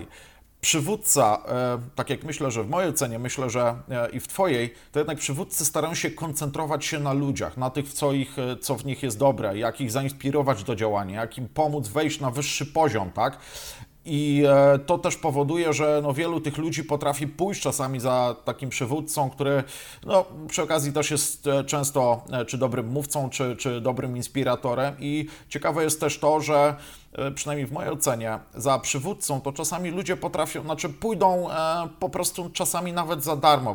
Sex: male